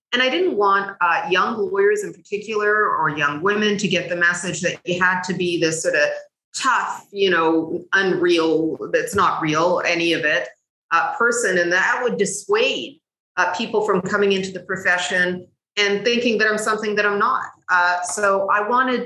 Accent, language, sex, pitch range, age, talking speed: American, English, female, 175-210 Hz, 40-59, 185 wpm